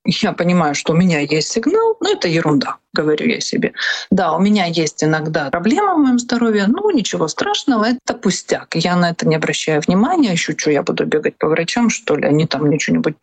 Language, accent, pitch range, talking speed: Russian, native, 165-215 Hz, 210 wpm